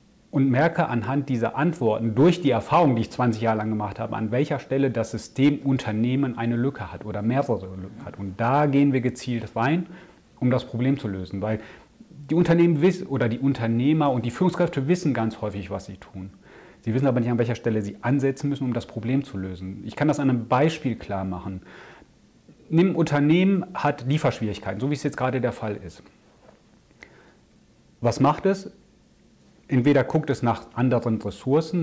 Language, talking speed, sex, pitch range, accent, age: German, 185 wpm, male, 110-145 Hz, German, 30-49